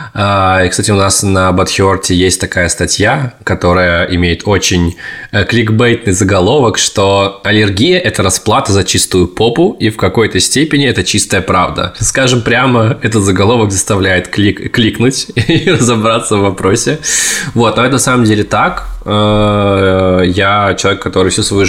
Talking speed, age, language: 140 wpm, 20-39, Russian